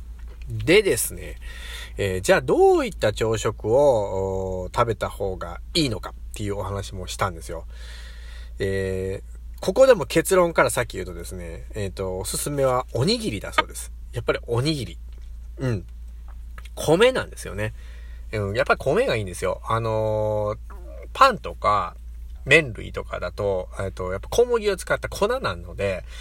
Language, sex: Japanese, male